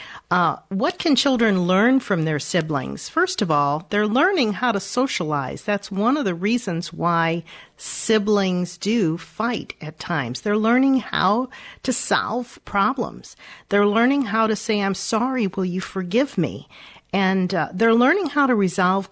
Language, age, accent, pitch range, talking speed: English, 50-69, American, 170-225 Hz, 160 wpm